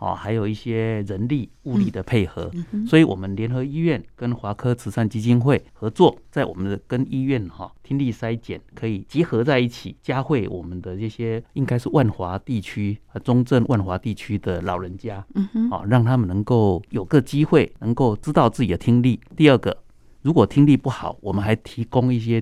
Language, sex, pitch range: Chinese, male, 105-135 Hz